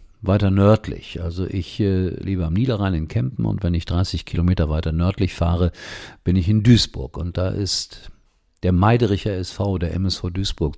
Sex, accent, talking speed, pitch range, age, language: male, German, 175 wpm, 85-105 Hz, 50-69, German